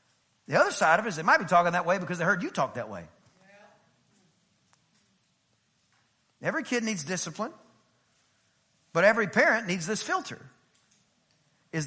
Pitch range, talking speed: 130-185 Hz, 150 wpm